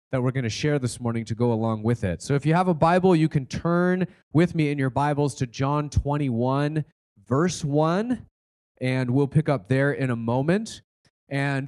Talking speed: 205 wpm